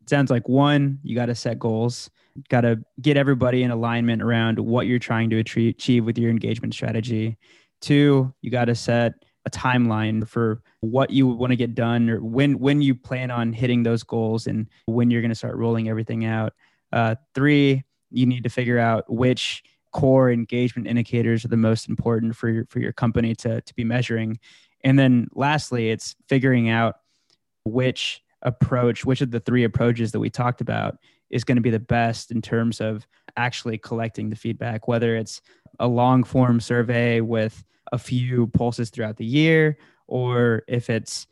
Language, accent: English, American